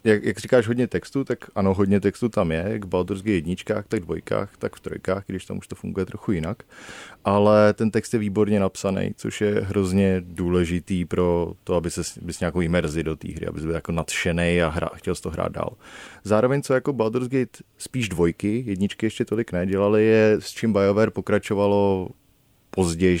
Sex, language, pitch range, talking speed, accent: male, Czech, 90-110 Hz, 190 wpm, native